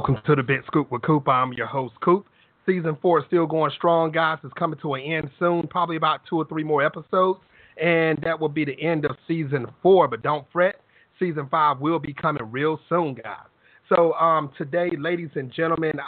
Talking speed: 215 wpm